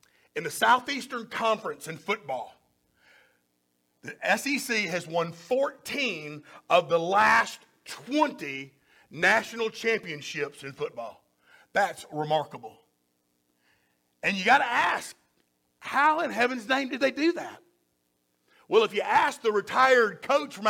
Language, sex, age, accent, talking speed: English, male, 50-69, American, 120 wpm